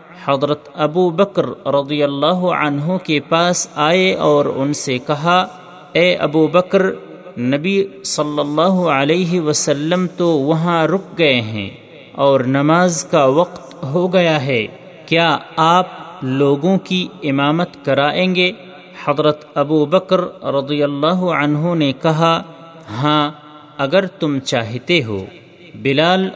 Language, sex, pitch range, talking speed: Urdu, male, 145-180 Hz, 125 wpm